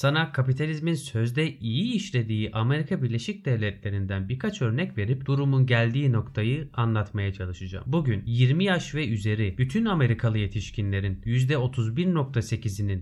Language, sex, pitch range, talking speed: Turkish, male, 105-140 Hz, 115 wpm